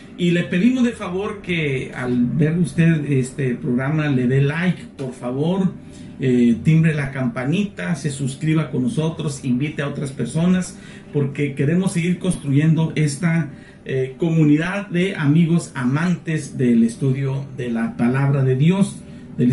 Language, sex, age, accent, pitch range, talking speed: Spanish, male, 50-69, Mexican, 135-180 Hz, 140 wpm